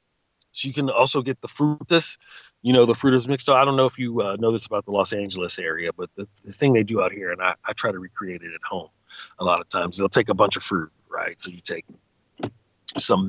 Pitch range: 100-125 Hz